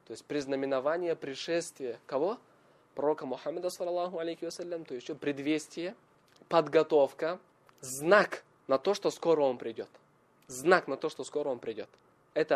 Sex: male